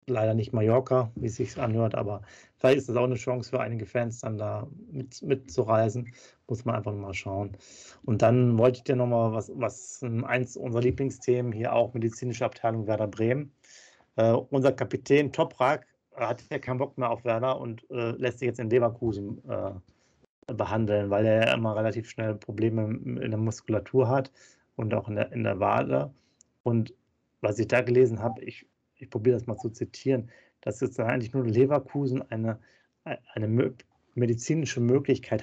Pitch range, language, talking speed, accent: 115-130 Hz, German, 175 wpm, German